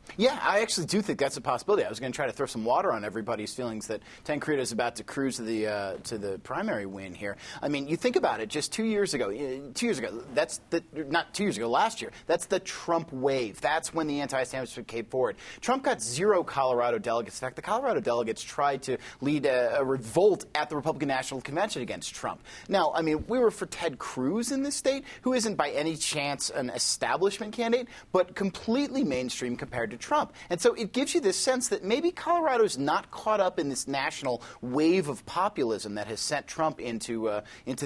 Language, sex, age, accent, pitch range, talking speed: English, male, 30-49, American, 115-185 Hz, 220 wpm